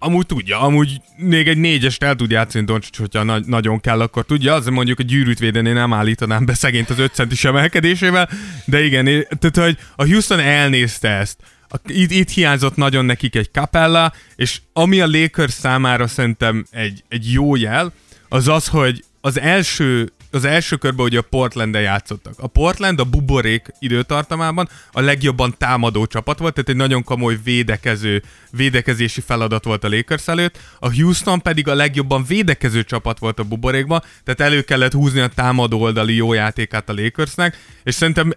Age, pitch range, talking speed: 20-39, 115-150 Hz, 175 wpm